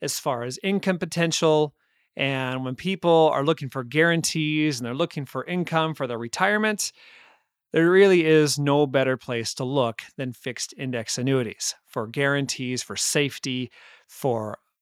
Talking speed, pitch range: 150 wpm, 130-170 Hz